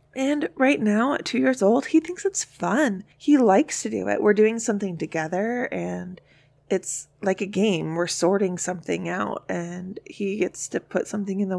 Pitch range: 175-225 Hz